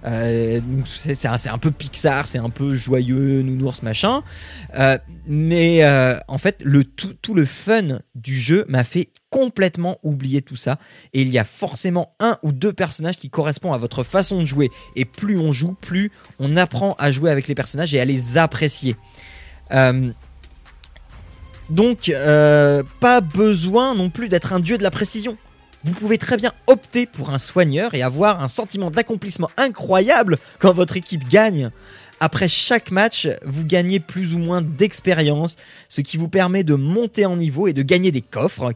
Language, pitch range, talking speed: French, 130-185 Hz, 180 wpm